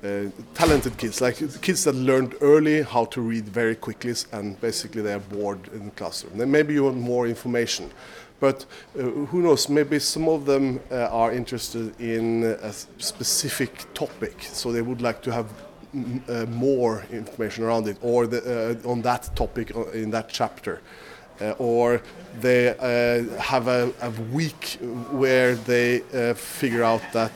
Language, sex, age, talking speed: English, male, 30-49, 165 wpm